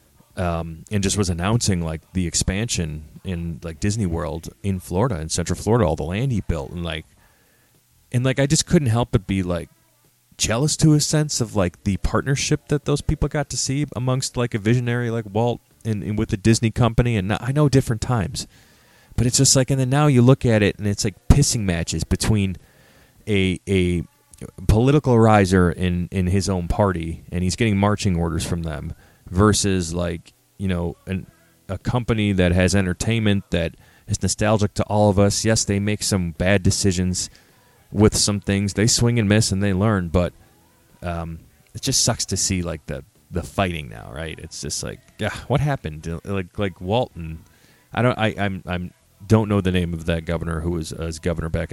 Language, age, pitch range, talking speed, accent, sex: English, 30-49, 85-115 Hz, 195 wpm, American, male